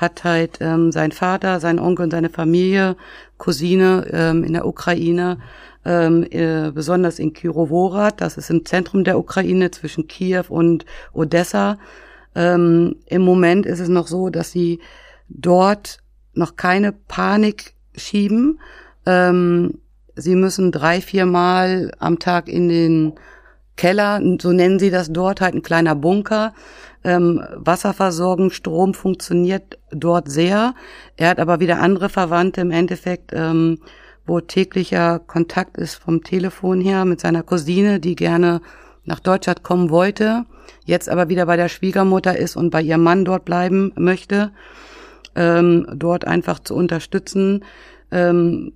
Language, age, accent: German, 50-69, German